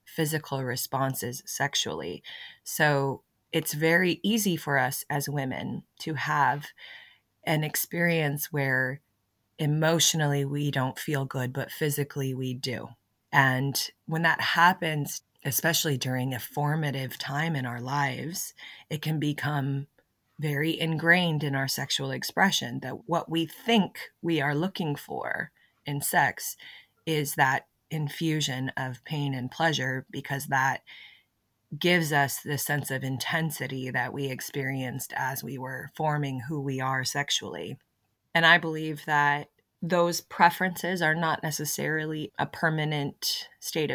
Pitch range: 130-155 Hz